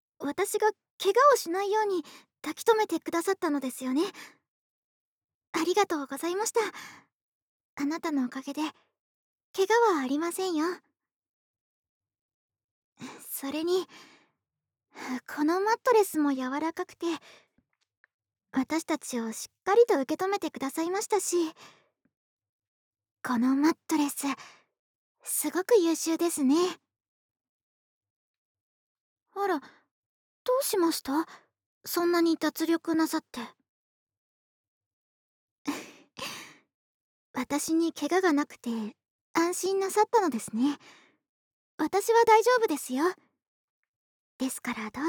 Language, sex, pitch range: Japanese, male, 290-400 Hz